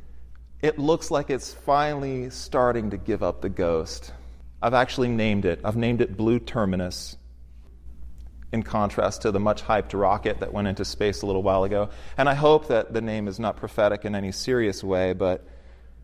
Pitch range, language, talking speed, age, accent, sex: 90-125 Hz, English, 180 wpm, 30-49, American, male